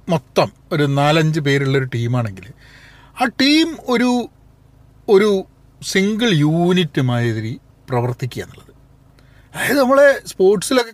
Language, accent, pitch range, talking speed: Malayalam, native, 130-180 Hz, 95 wpm